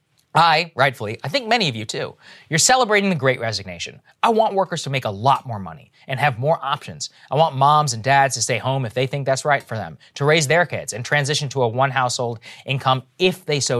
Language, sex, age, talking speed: English, male, 20-39, 235 wpm